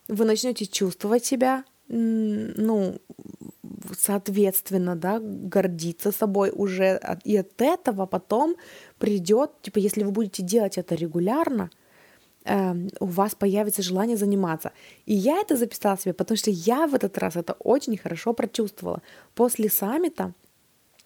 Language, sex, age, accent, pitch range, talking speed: Russian, female, 20-39, native, 180-220 Hz, 125 wpm